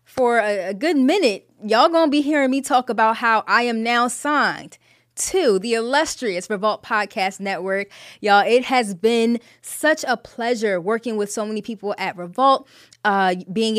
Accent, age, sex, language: American, 10-29, female, English